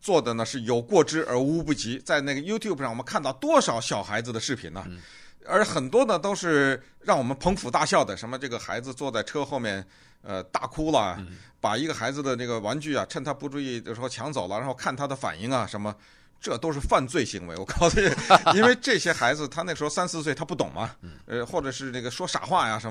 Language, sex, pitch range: Chinese, male, 120-165 Hz